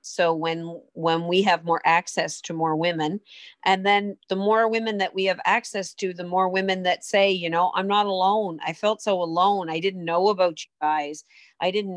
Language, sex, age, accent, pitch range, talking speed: English, female, 40-59, American, 165-190 Hz, 210 wpm